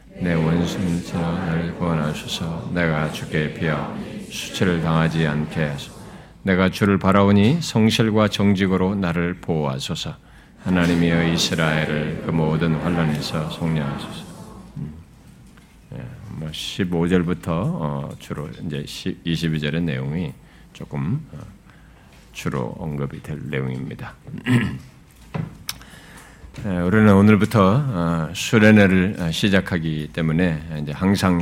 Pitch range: 80-95 Hz